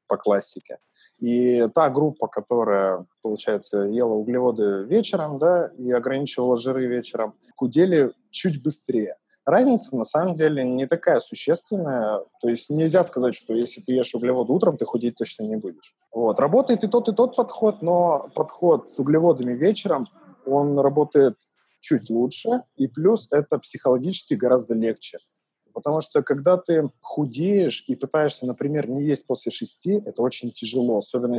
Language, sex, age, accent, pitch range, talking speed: Russian, male, 20-39, native, 120-160 Hz, 150 wpm